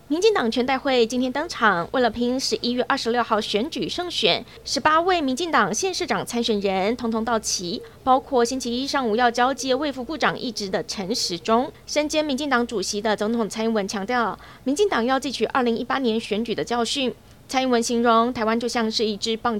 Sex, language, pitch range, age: female, Chinese, 215-275 Hz, 20-39